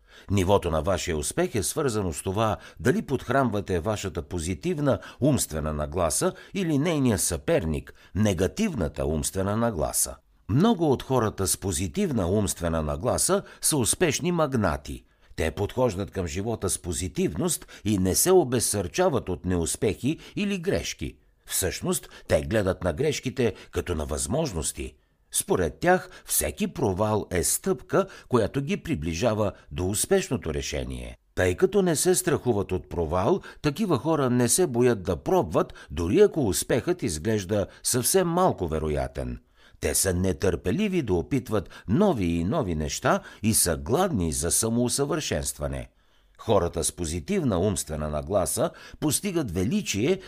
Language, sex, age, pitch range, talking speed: Bulgarian, male, 60-79, 85-145 Hz, 130 wpm